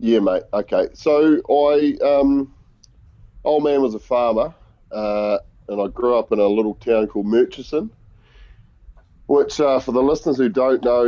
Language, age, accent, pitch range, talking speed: English, 30-49, Australian, 100-120 Hz, 160 wpm